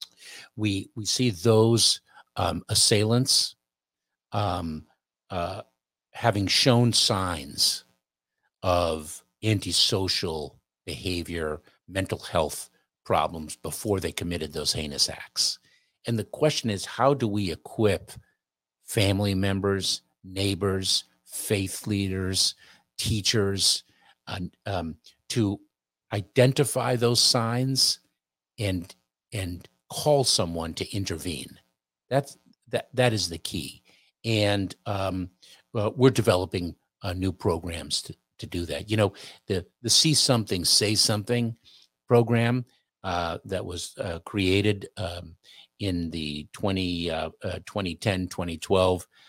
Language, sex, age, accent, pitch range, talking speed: English, male, 50-69, American, 85-110 Hz, 105 wpm